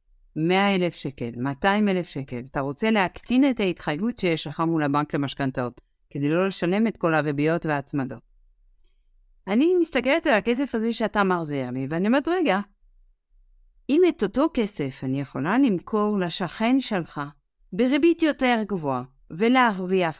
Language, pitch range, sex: Hebrew, 150-225 Hz, female